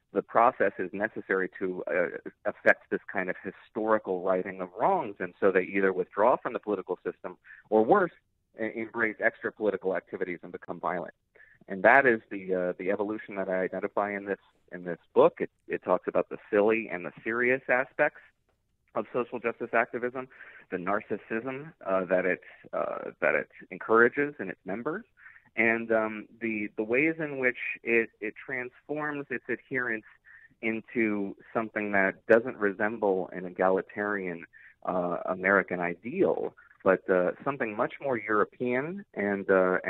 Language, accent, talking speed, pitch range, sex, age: English, American, 155 wpm, 95-125 Hz, male, 40-59